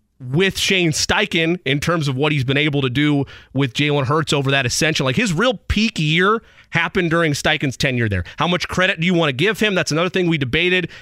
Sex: male